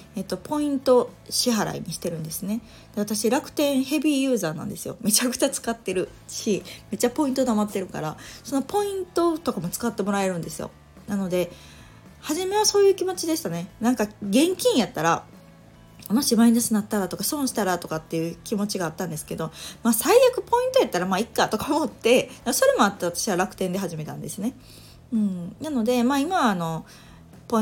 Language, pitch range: Japanese, 185-240 Hz